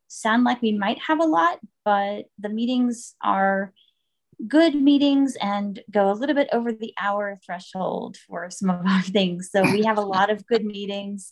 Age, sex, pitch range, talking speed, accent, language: 20-39, female, 195-235 Hz, 185 wpm, American, English